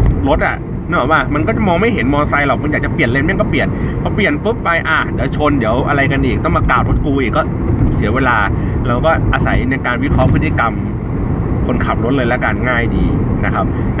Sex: male